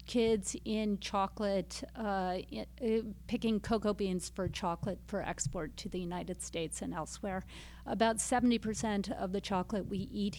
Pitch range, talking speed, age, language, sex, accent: 195-220 Hz, 140 wpm, 50-69, English, female, American